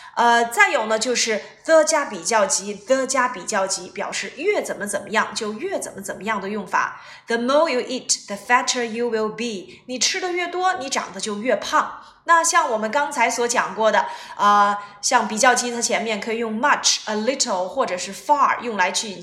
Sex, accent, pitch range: female, native, 205-280 Hz